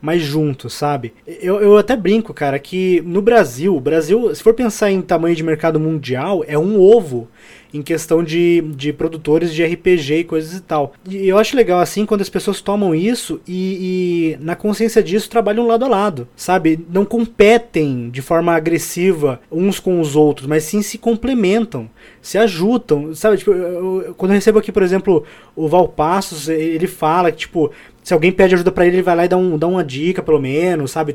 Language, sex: Portuguese, male